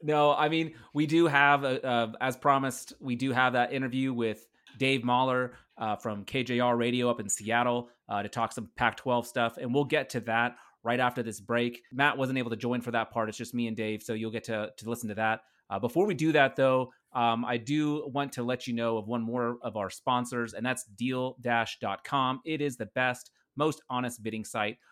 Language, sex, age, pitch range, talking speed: English, male, 30-49, 115-135 Hz, 220 wpm